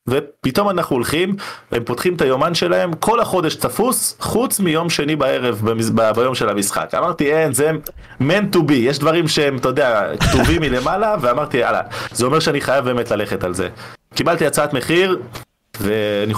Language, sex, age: Hebrew, male, 20-39